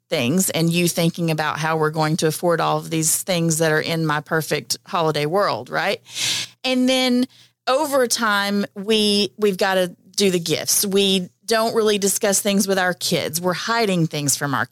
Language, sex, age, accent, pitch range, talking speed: English, female, 30-49, American, 180-225 Hz, 190 wpm